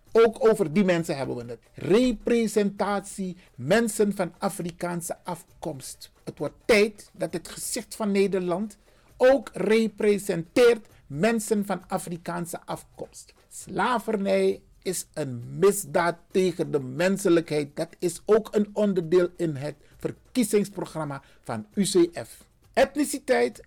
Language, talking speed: Dutch, 110 wpm